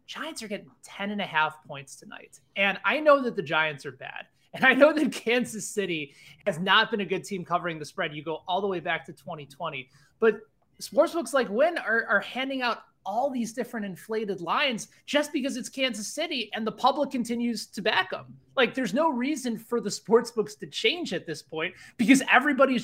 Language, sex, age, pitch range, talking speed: English, male, 20-39, 170-240 Hz, 215 wpm